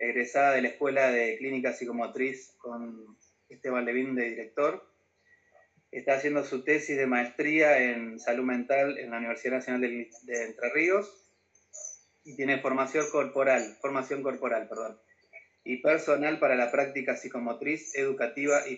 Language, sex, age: Spanish, male, 30-49